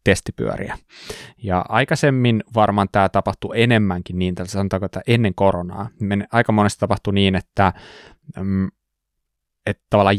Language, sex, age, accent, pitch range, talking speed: Finnish, male, 20-39, native, 95-110 Hz, 110 wpm